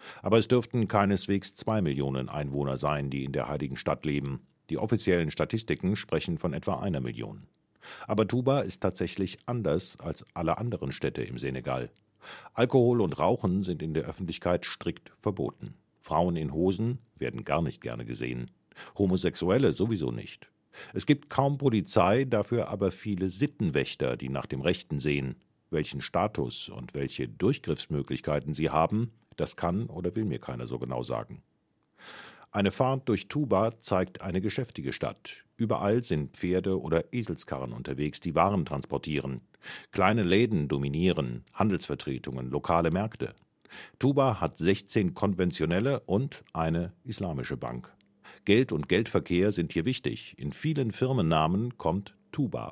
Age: 50-69